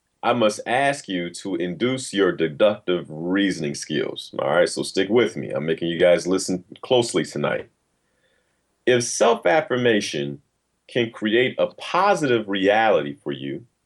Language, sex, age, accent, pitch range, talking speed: English, male, 40-59, American, 85-135 Hz, 140 wpm